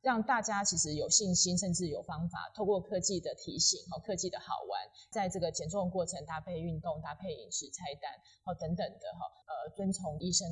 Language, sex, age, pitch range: Chinese, female, 20-39, 165-205 Hz